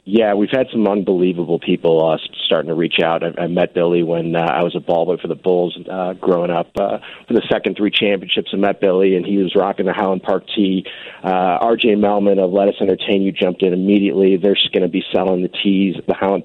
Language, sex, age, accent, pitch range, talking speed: English, male, 40-59, American, 90-100 Hz, 235 wpm